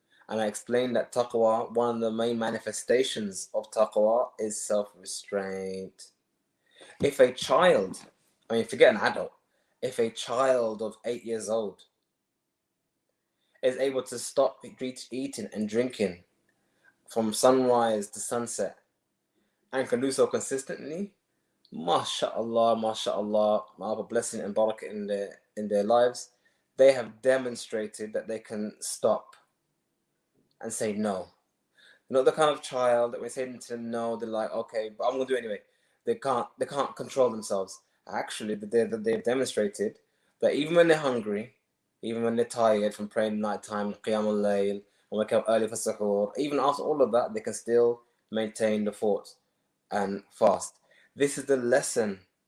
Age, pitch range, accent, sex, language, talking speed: 20-39, 105-120 Hz, British, male, English, 160 wpm